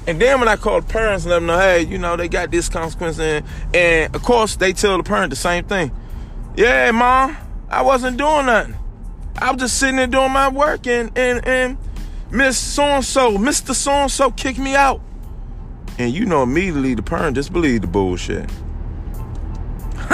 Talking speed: 195 wpm